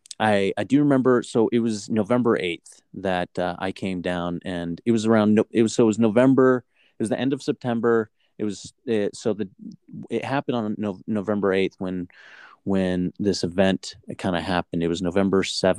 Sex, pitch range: male, 90-110 Hz